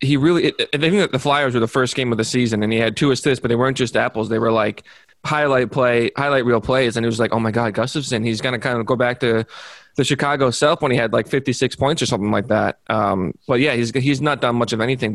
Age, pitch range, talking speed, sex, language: 20-39, 120-145 Hz, 280 wpm, male, English